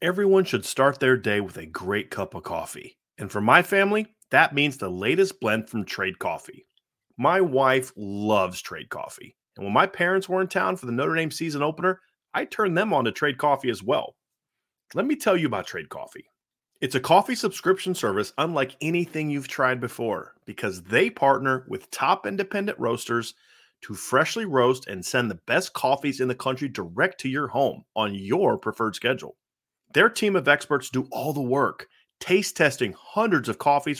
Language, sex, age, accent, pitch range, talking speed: English, male, 30-49, American, 125-180 Hz, 185 wpm